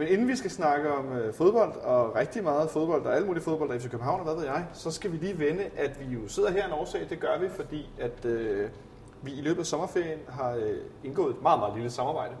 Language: Danish